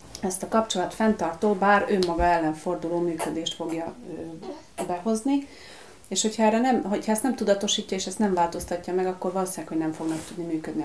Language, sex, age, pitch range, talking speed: Hungarian, female, 30-49, 175-225 Hz, 175 wpm